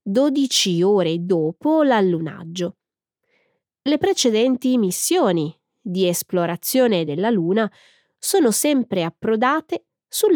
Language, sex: Italian, female